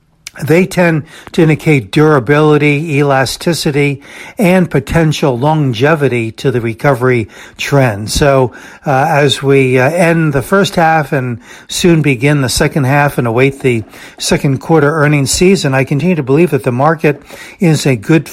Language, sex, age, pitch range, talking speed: English, male, 60-79, 130-155 Hz, 145 wpm